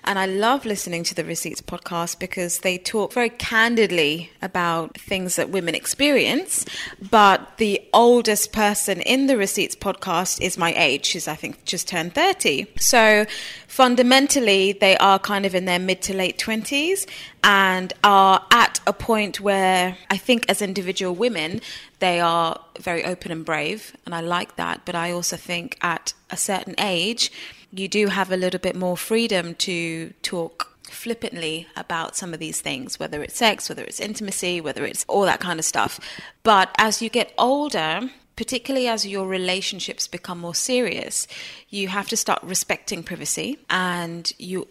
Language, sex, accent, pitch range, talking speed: English, female, British, 170-215 Hz, 170 wpm